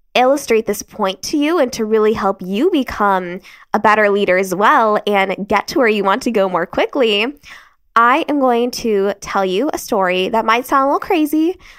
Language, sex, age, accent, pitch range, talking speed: English, female, 10-29, American, 200-275 Hz, 205 wpm